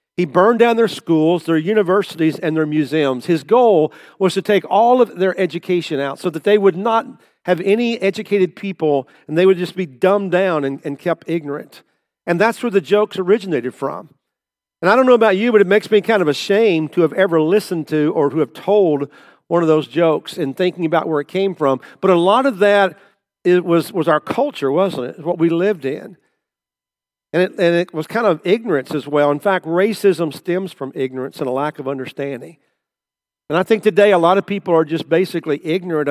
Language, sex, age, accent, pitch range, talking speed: English, male, 50-69, American, 155-195 Hz, 215 wpm